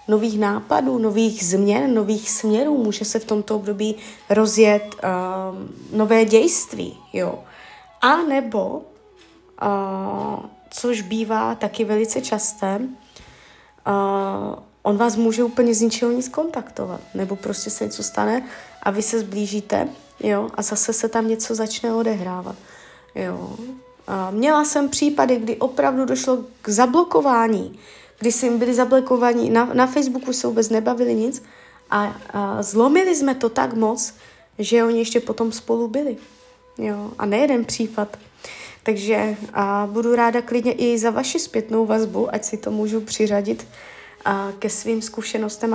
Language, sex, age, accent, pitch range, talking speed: Czech, female, 20-39, native, 210-245 Hz, 140 wpm